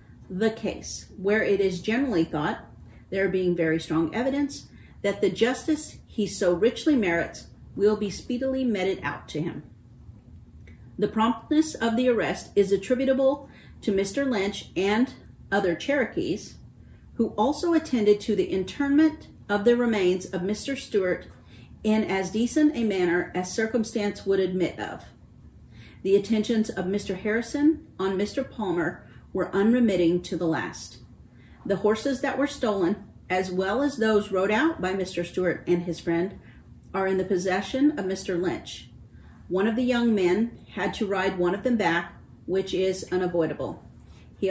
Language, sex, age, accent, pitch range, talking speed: English, female, 40-59, American, 180-230 Hz, 155 wpm